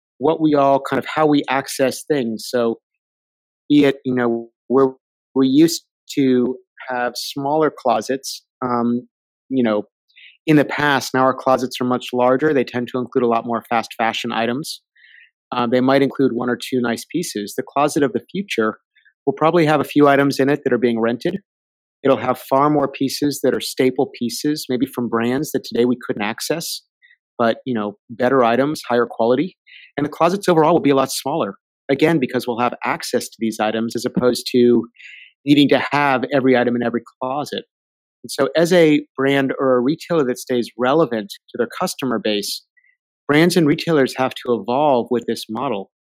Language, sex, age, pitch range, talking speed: English, male, 30-49, 120-145 Hz, 190 wpm